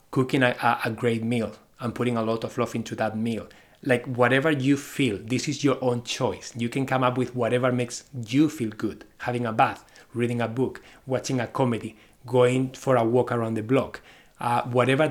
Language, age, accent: English, 30-49, Spanish